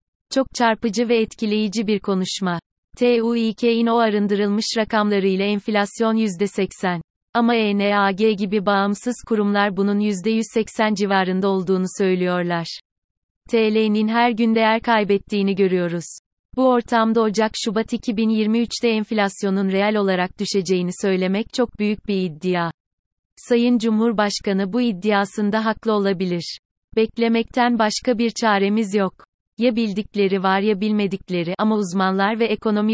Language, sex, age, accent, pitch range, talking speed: Turkish, female, 30-49, native, 190-225 Hz, 110 wpm